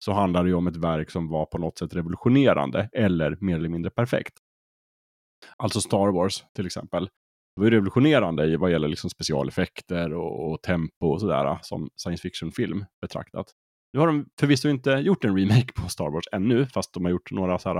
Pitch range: 80-105 Hz